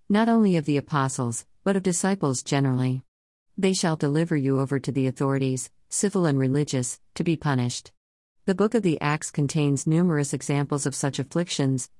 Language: Malayalam